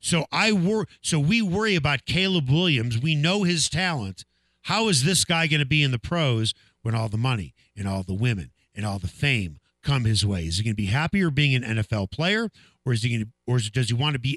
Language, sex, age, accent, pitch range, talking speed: English, male, 50-69, American, 95-140 Hz, 245 wpm